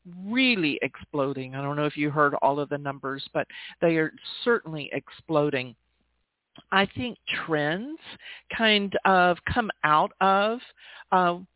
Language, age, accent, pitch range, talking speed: English, 50-69, American, 150-200 Hz, 135 wpm